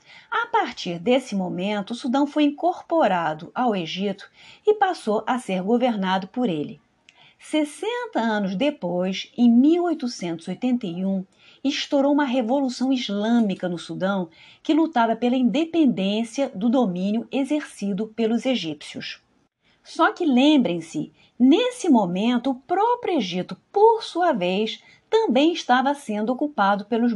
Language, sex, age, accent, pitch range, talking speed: Portuguese, female, 40-59, Brazilian, 205-290 Hz, 115 wpm